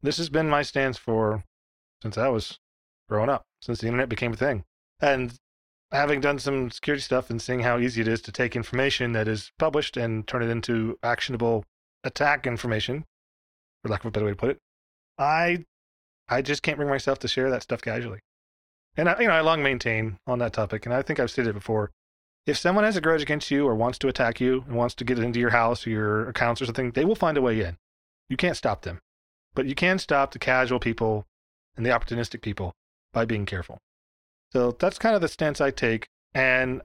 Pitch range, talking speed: 105-135 Hz, 225 wpm